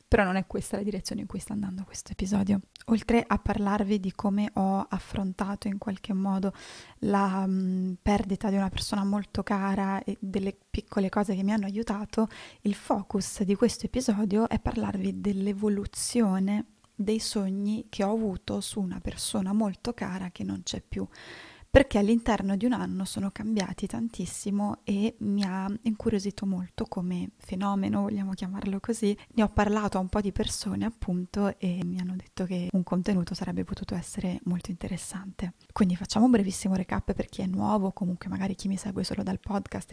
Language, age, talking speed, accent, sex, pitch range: Italian, 20-39, 175 wpm, native, female, 190-215 Hz